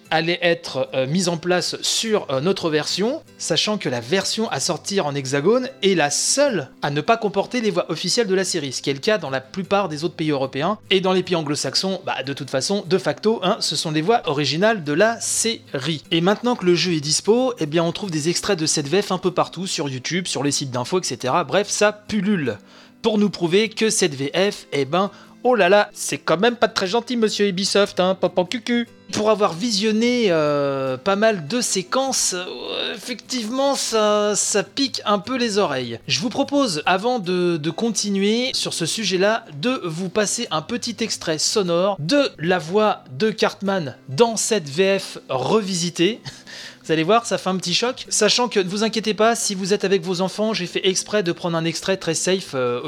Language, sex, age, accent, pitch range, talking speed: French, male, 30-49, French, 165-220 Hz, 215 wpm